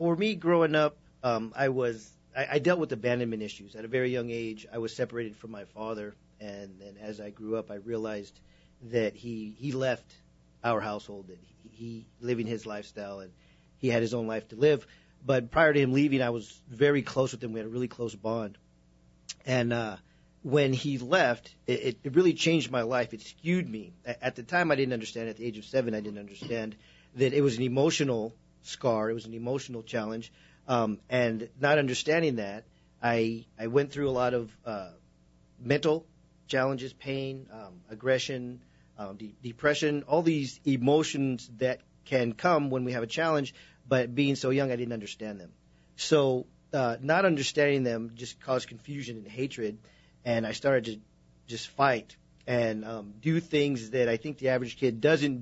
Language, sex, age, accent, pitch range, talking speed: English, male, 40-59, American, 110-135 Hz, 190 wpm